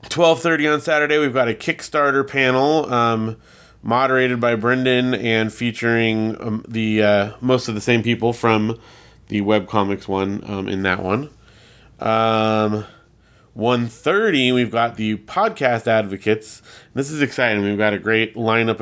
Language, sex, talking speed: English, male, 145 wpm